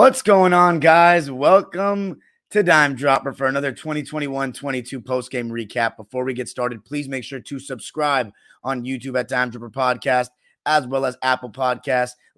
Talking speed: 165 wpm